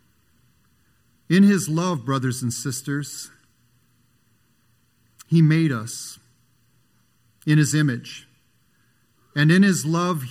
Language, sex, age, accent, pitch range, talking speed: English, male, 50-69, American, 135-175 Hz, 95 wpm